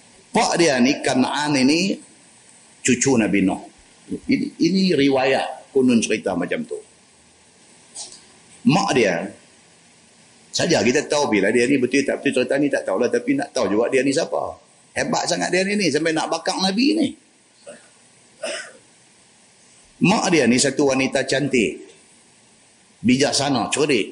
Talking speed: 135 wpm